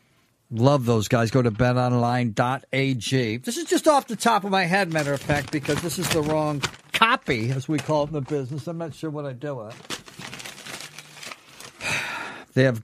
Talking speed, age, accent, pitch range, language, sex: 185 wpm, 50-69, American, 120-160 Hz, English, male